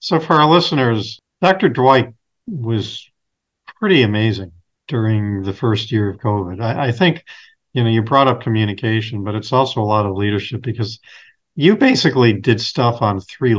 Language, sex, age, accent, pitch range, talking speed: English, male, 50-69, American, 110-135 Hz, 170 wpm